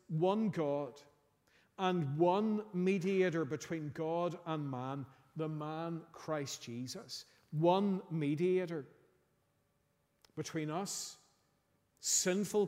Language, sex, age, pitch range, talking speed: English, male, 50-69, 140-175 Hz, 85 wpm